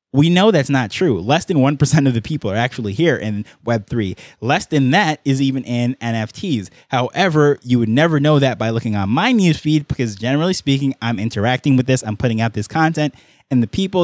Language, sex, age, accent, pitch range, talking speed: English, male, 20-39, American, 120-145 Hz, 215 wpm